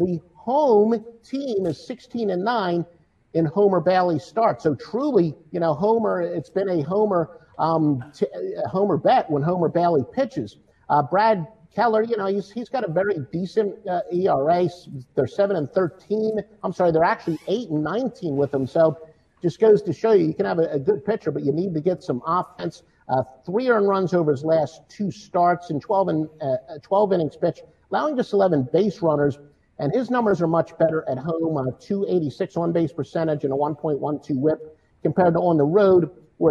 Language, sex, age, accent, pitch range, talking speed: English, male, 50-69, American, 155-195 Hz, 190 wpm